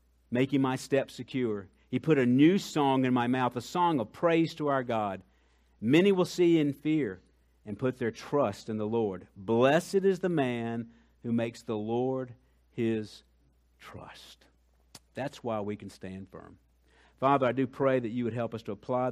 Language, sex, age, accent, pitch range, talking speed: English, male, 50-69, American, 90-135 Hz, 180 wpm